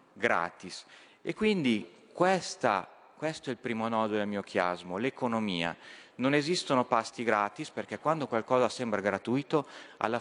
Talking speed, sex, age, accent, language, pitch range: 135 wpm, male, 40-59, native, Italian, 115-150 Hz